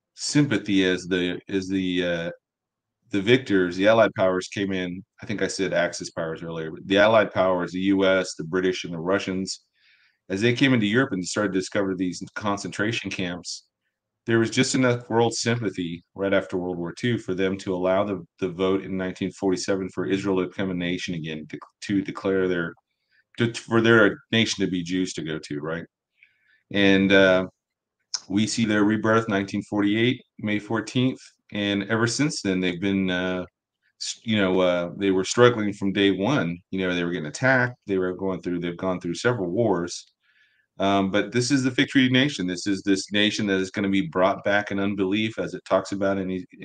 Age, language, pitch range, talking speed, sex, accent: 40-59, English, 95-110 Hz, 195 wpm, male, American